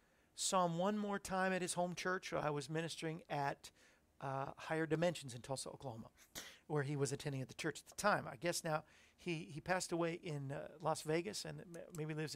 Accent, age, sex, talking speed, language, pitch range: American, 50-69, male, 215 wpm, English, 140-175 Hz